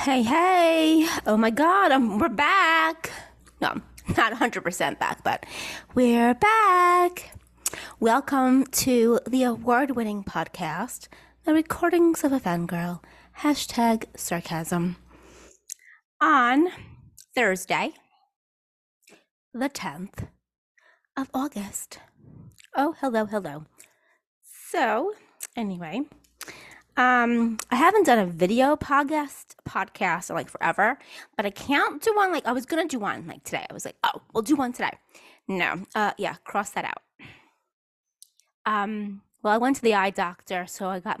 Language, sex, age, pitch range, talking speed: English, female, 20-39, 195-300 Hz, 130 wpm